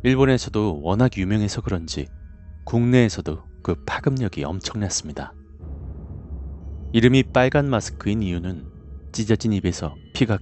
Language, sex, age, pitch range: Korean, male, 30-49, 70-110 Hz